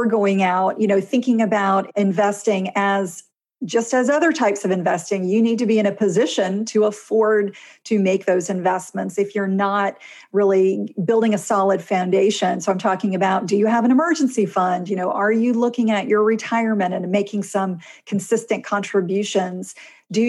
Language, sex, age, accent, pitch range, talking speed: English, female, 40-59, American, 195-225 Hz, 175 wpm